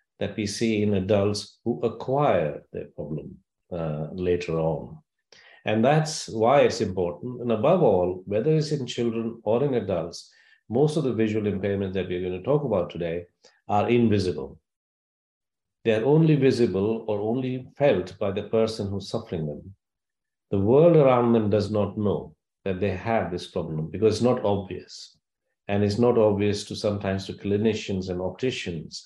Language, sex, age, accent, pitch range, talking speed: English, male, 50-69, Indian, 95-115 Hz, 165 wpm